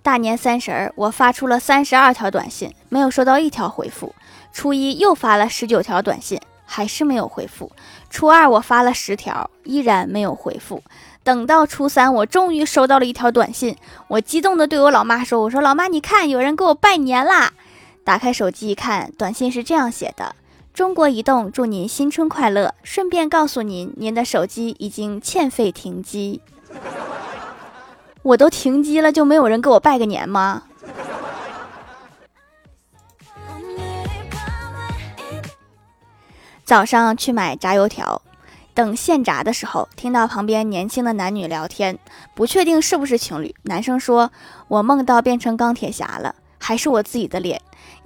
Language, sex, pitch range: Chinese, female, 210-280 Hz